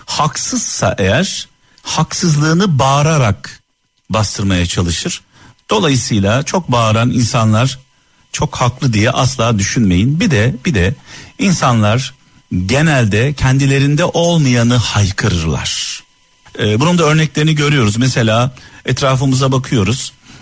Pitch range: 115-160 Hz